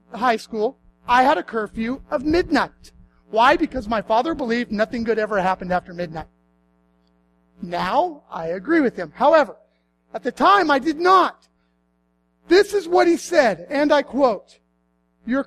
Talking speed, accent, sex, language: 155 wpm, American, male, English